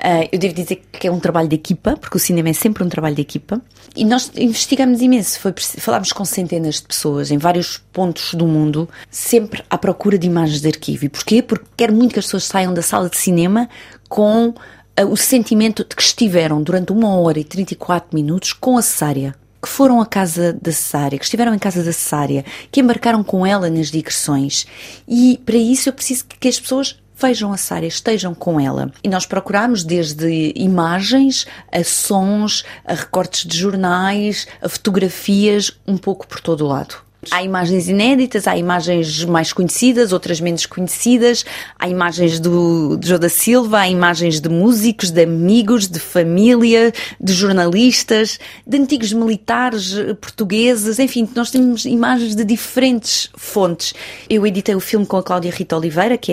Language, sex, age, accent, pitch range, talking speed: Portuguese, female, 30-49, Brazilian, 175-230 Hz, 180 wpm